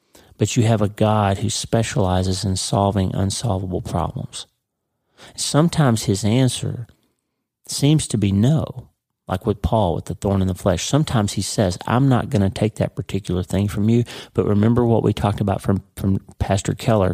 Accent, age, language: American, 40-59, English